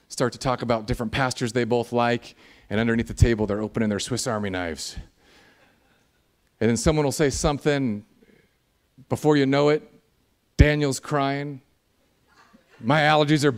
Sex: male